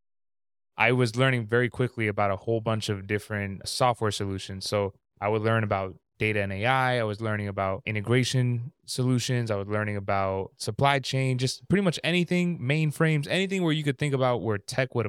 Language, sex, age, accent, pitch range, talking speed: English, male, 20-39, American, 105-130 Hz, 185 wpm